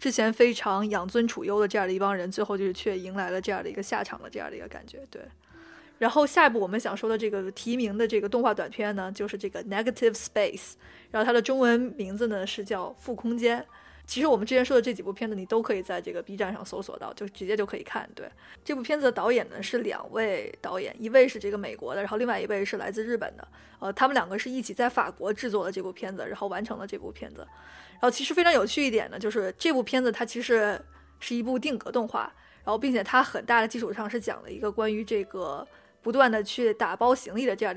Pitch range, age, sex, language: 210-245 Hz, 20-39, female, Chinese